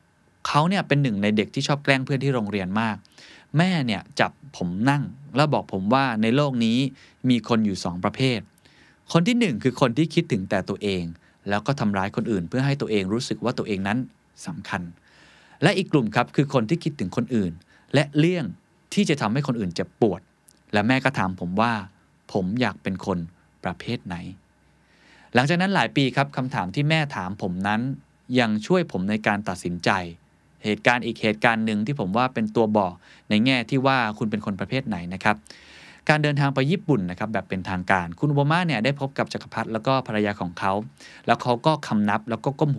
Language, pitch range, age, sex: Thai, 100-140 Hz, 20-39, male